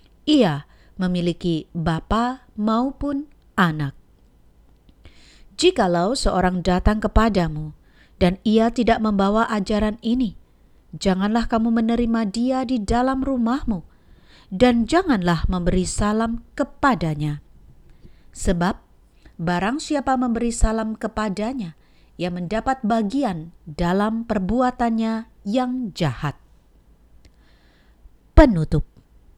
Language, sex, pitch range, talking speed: Indonesian, female, 180-255 Hz, 85 wpm